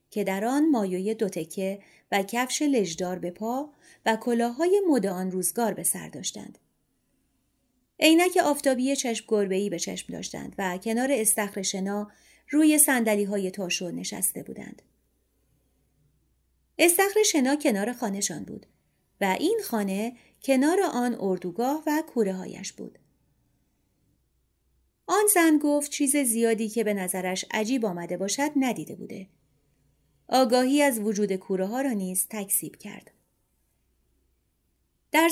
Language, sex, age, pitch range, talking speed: Persian, female, 30-49, 190-275 Hz, 120 wpm